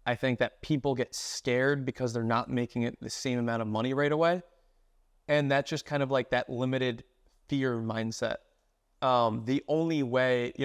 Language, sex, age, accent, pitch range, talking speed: English, male, 20-39, American, 120-145 Hz, 185 wpm